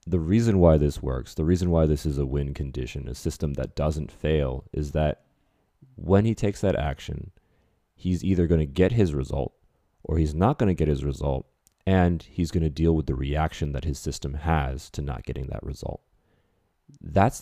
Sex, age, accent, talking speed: male, 30-49, American, 200 wpm